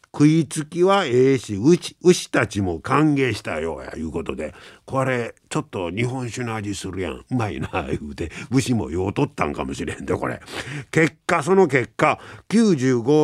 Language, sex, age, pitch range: Japanese, male, 50-69, 110-170 Hz